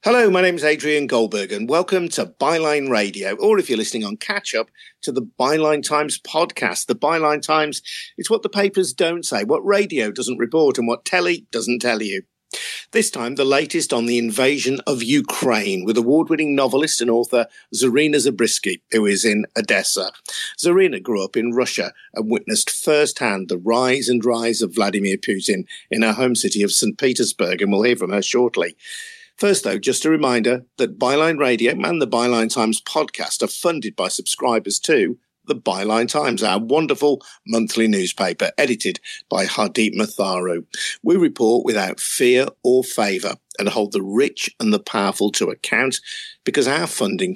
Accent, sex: British, male